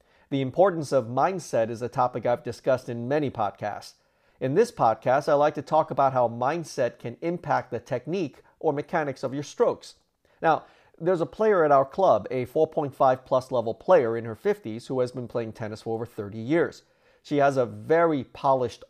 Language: English